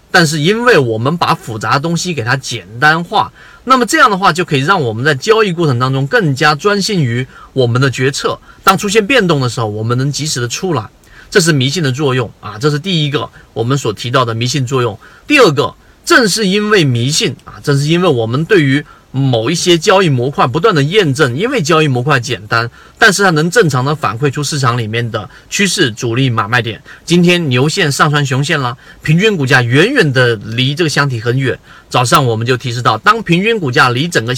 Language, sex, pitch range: Chinese, male, 125-170 Hz